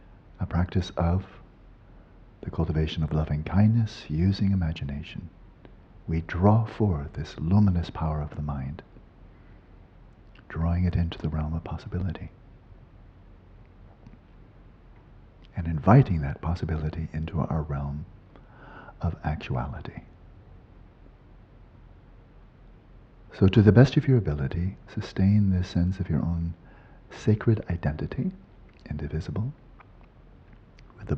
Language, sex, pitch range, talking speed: English, male, 80-105 Hz, 100 wpm